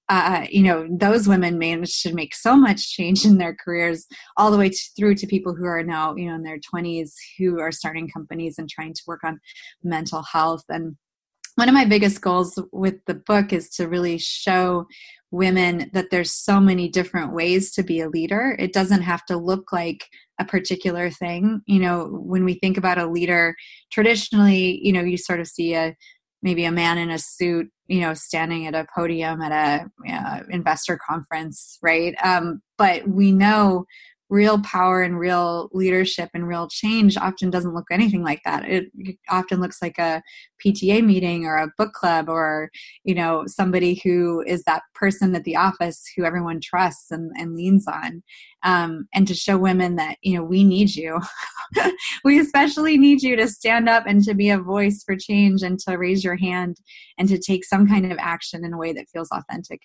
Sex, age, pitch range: female, 20-39, 165-195 Hz